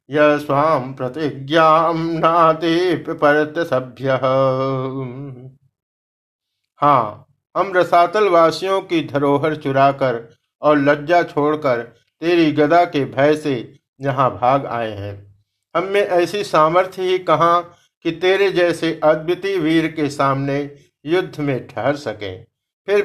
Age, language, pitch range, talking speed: 50-69, Hindi, 130-170 Hz, 95 wpm